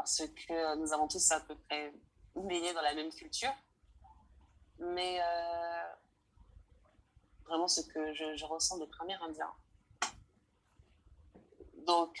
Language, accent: French, French